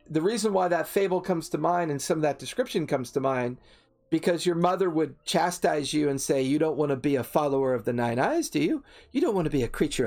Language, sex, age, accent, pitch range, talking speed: English, male, 40-59, American, 130-180 Hz, 260 wpm